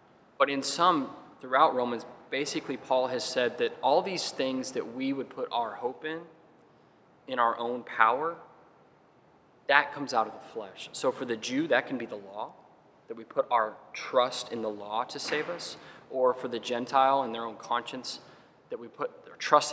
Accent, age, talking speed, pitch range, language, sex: American, 20-39, 190 wpm, 120-160 Hz, English, male